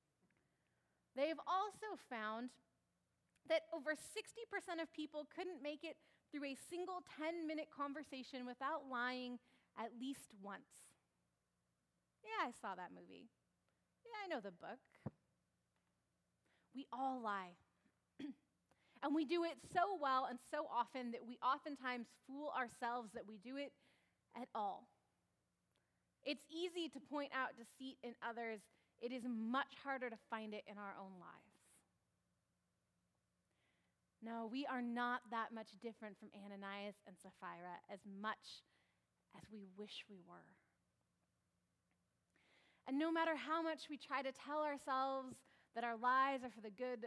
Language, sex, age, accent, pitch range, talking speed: English, female, 30-49, American, 220-300 Hz, 140 wpm